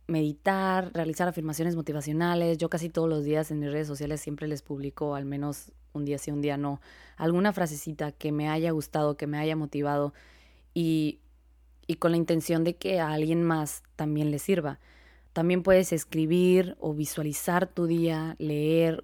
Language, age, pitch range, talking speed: Spanish, 20-39, 150-175 Hz, 175 wpm